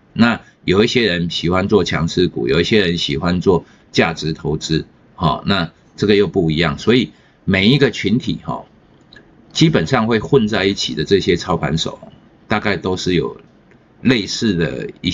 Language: Chinese